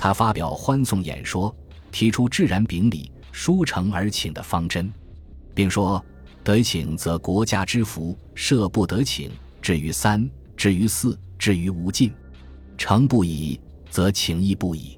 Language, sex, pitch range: Chinese, male, 85-115 Hz